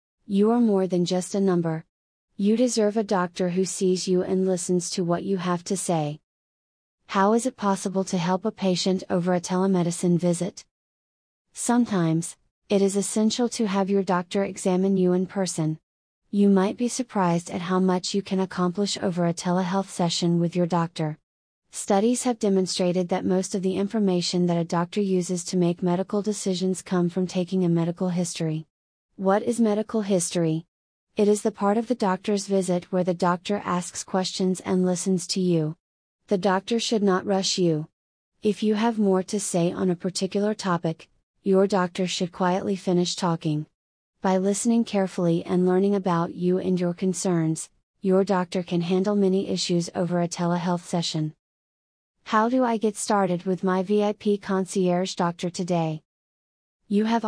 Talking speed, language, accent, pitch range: 170 wpm, English, American, 175-200 Hz